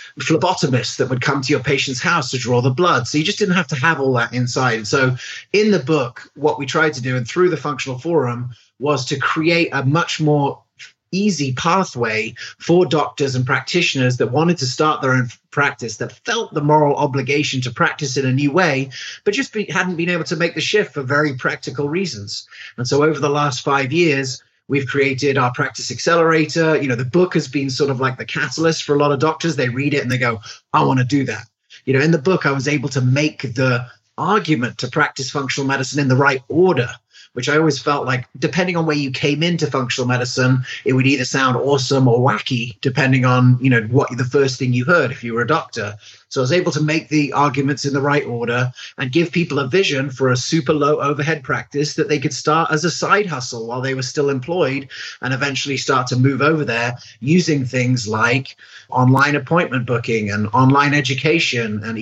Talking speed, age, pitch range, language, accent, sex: 220 wpm, 30-49, 125-155 Hz, English, British, male